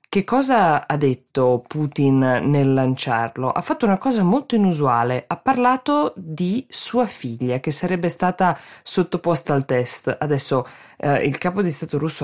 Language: Italian